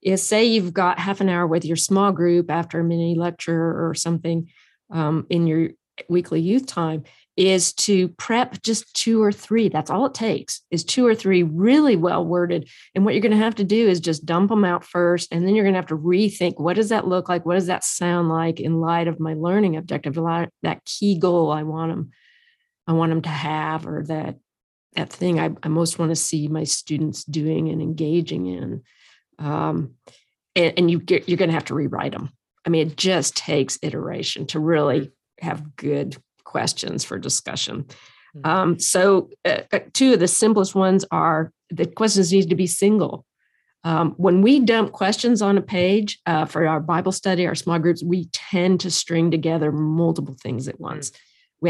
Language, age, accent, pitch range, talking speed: English, 40-59, American, 160-190 Hz, 200 wpm